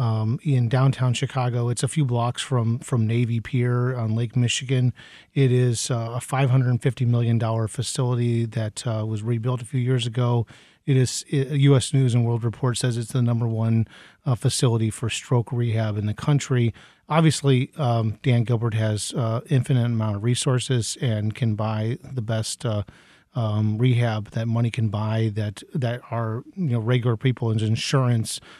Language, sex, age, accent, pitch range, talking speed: English, male, 40-59, American, 110-130 Hz, 175 wpm